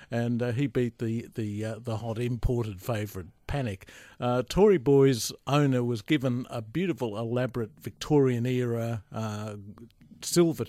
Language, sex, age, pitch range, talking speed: English, male, 50-69, 115-140 Hz, 135 wpm